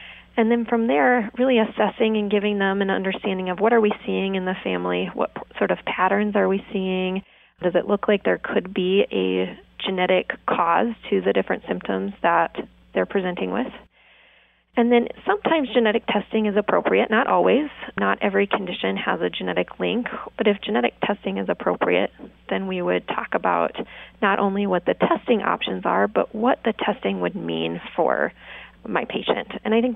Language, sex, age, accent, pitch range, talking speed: English, female, 30-49, American, 180-230 Hz, 180 wpm